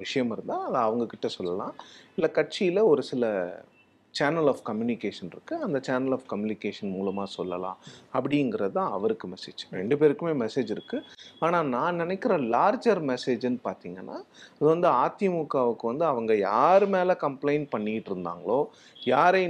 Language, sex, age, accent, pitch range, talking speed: Tamil, male, 30-49, native, 115-170 Hz, 135 wpm